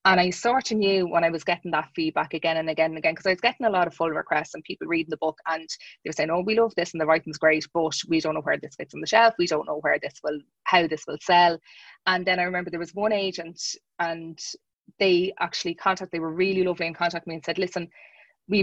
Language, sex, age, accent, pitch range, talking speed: English, female, 20-39, Irish, 160-185 Hz, 275 wpm